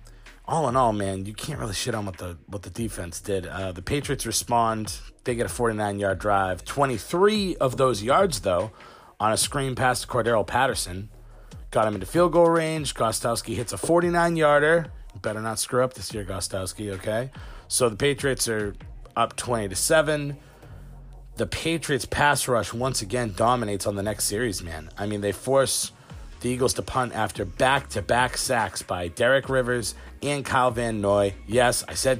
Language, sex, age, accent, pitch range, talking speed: English, male, 30-49, American, 100-130 Hz, 175 wpm